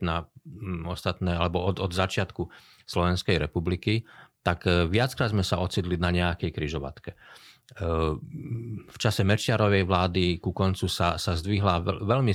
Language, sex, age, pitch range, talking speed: Slovak, male, 40-59, 90-110 Hz, 125 wpm